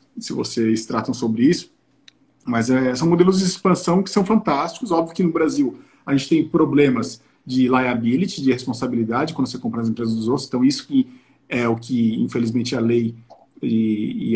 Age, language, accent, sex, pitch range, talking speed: 40-59, Portuguese, Brazilian, male, 120-185 Hz, 185 wpm